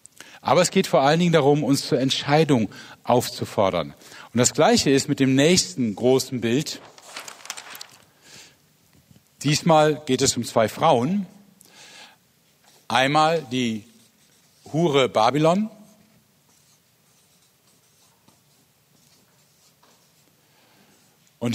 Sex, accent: male, German